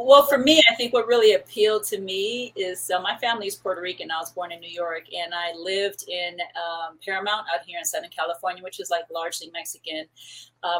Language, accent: English, American